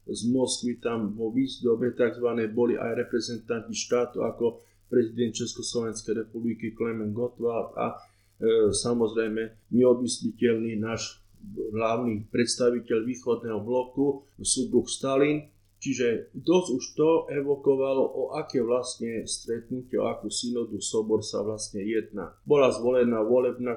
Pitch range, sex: 110-125 Hz, male